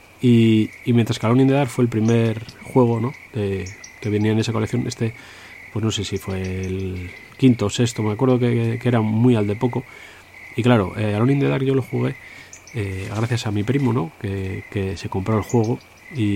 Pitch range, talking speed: 100-120 Hz, 220 wpm